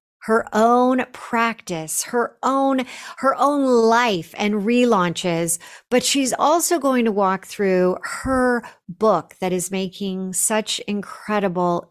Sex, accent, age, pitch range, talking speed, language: female, American, 50-69, 185-270 Hz, 120 wpm, English